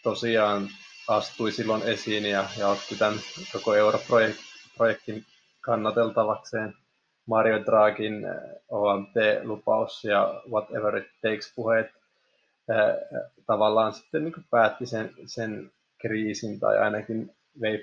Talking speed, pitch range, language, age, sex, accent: 100 wpm, 105-115 Hz, Finnish, 20-39, male, native